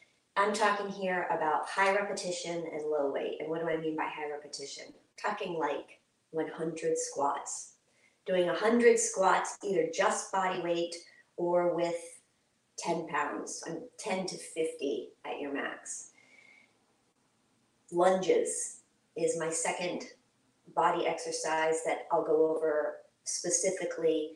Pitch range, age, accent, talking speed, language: 160-195 Hz, 30-49, American, 120 wpm, English